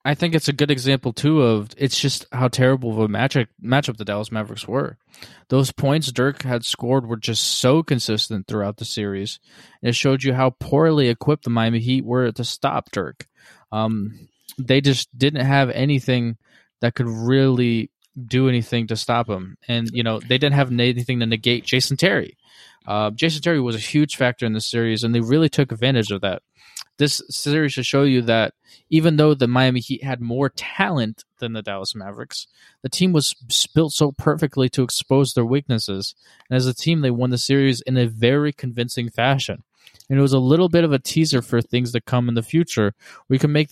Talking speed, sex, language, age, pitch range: 205 wpm, male, English, 20-39, 115-140 Hz